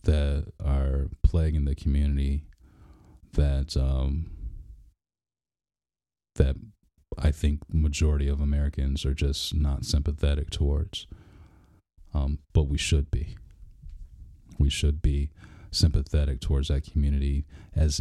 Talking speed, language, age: 105 wpm, English, 30-49